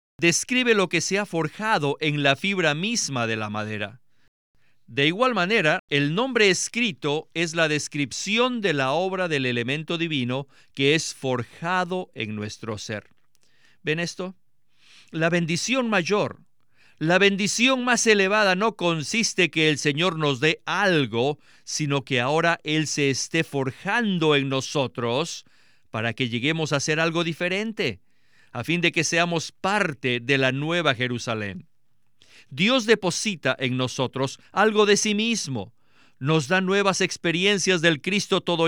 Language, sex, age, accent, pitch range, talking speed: Spanish, male, 50-69, Mexican, 135-190 Hz, 145 wpm